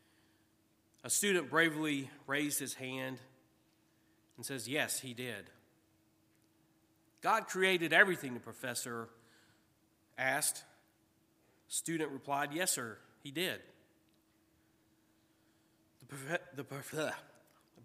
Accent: American